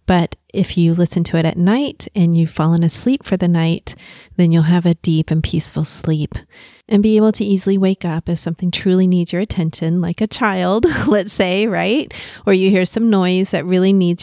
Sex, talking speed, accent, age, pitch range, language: female, 210 wpm, American, 30-49, 170-205 Hz, English